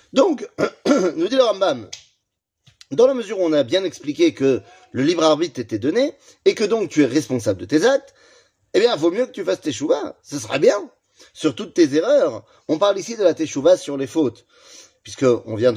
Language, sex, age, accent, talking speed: French, male, 30-49, French, 210 wpm